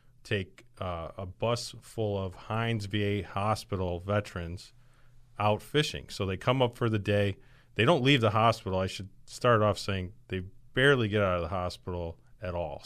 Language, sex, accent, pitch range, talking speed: English, male, American, 95-125 Hz, 175 wpm